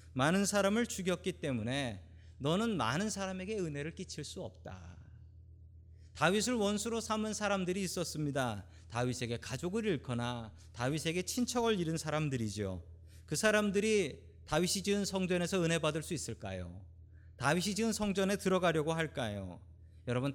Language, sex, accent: Korean, male, native